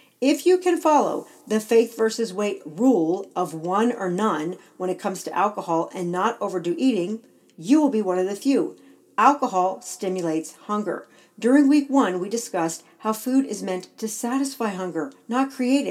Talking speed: 175 wpm